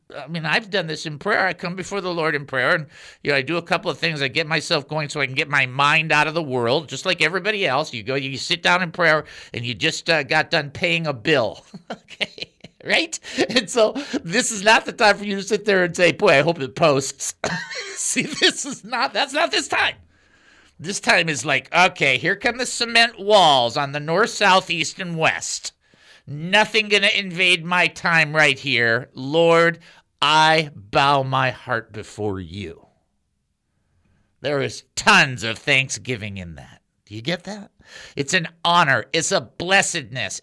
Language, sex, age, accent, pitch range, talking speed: English, male, 50-69, American, 140-190 Hz, 200 wpm